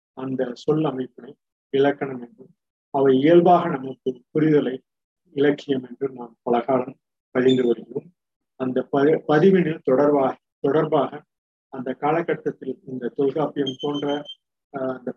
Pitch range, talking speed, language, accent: 130-155 Hz, 105 wpm, Tamil, native